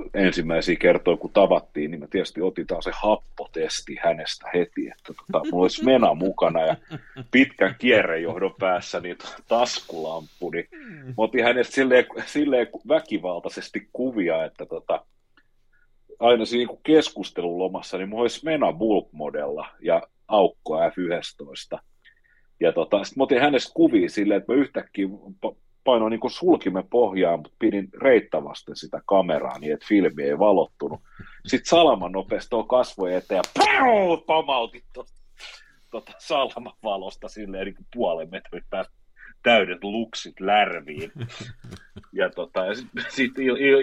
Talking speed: 125 wpm